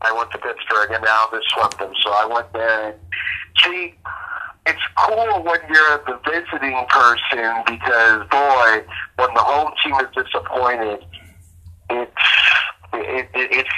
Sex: male